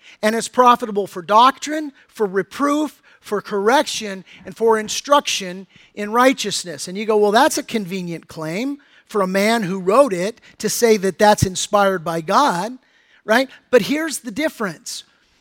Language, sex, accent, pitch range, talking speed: English, male, American, 195-260 Hz, 155 wpm